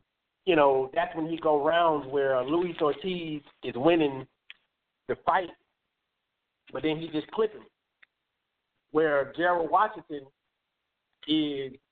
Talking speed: 120 wpm